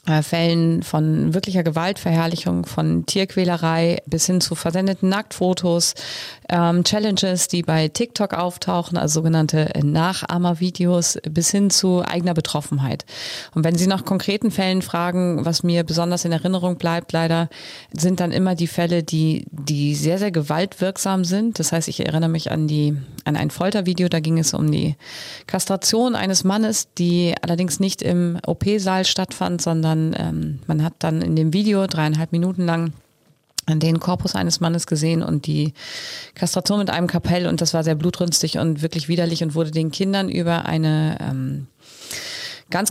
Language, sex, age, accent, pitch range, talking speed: German, female, 30-49, German, 160-185 Hz, 155 wpm